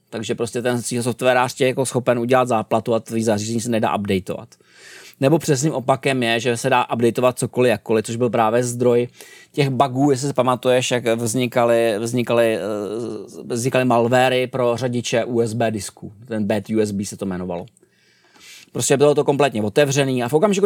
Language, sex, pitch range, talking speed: Czech, male, 120-160 Hz, 165 wpm